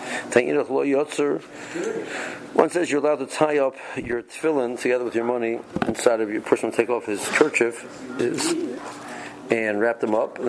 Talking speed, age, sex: 155 wpm, 50-69, male